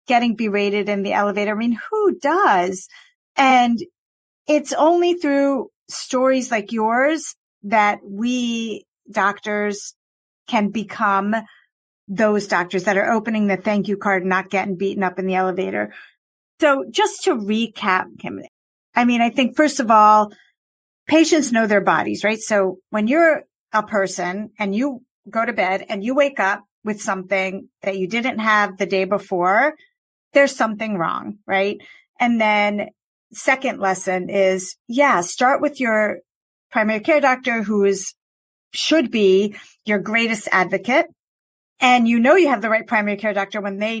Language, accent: English, American